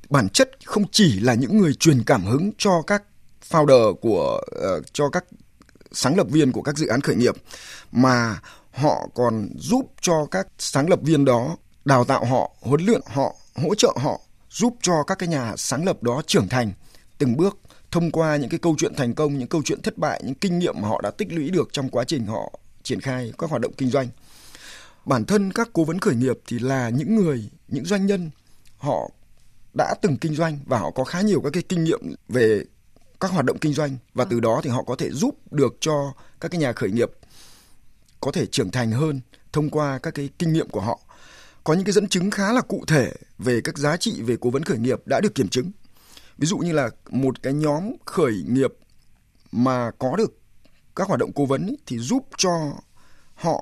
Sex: male